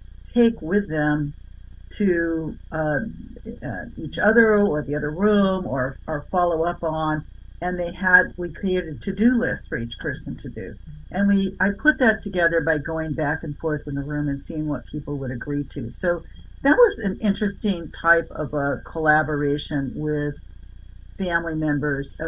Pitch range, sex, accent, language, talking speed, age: 145-185 Hz, female, American, English, 170 wpm, 60-79